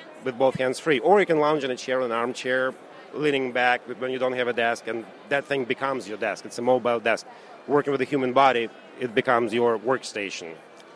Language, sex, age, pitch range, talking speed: English, male, 40-59, 120-140 Hz, 225 wpm